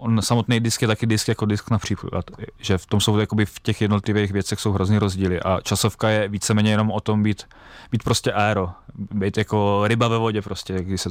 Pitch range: 100-110 Hz